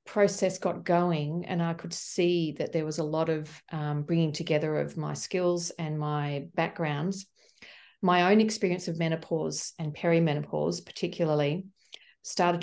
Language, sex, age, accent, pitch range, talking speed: English, female, 40-59, Australian, 155-180 Hz, 145 wpm